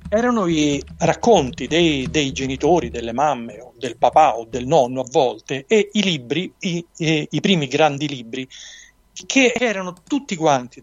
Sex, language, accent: male, Italian, native